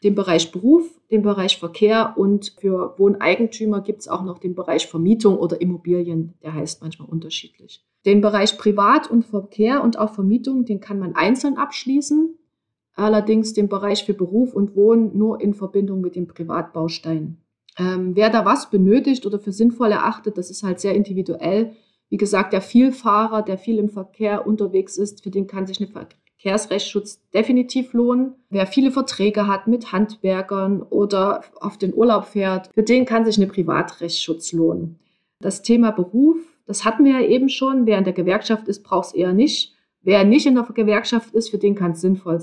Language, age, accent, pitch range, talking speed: German, 30-49, German, 185-225 Hz, 180 wpm